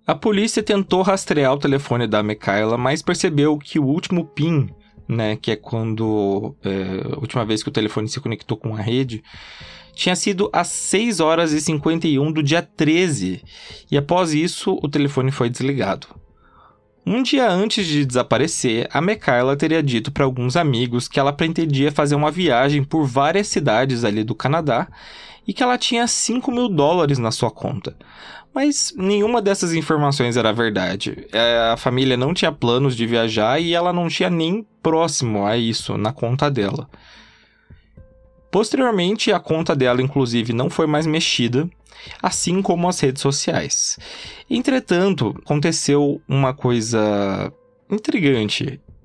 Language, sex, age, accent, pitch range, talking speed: Portuguese, male, 20-39, Brazilian, 120-170 Hz, 150 wpm